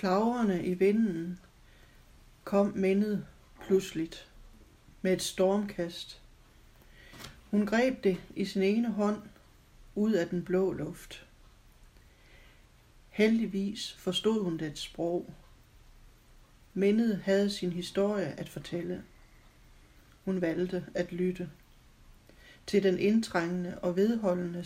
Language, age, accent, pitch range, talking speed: Danish, 60-79, native, 180-200 Hz, 100 wpm